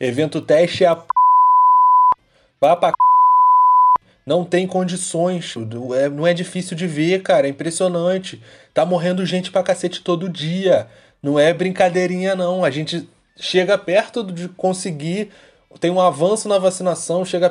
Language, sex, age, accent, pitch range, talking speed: Portuguese, male, 20-39, Brazilian, 160-195 Hz, 145 wpm